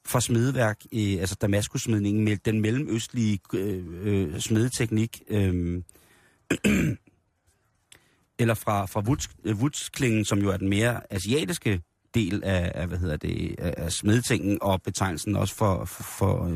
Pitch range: 100-120 Hz